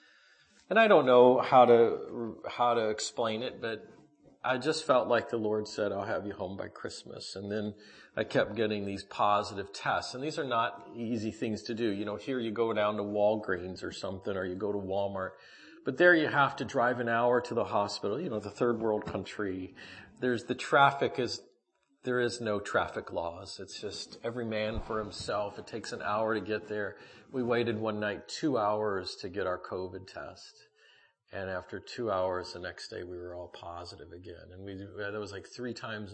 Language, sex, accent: English, male, American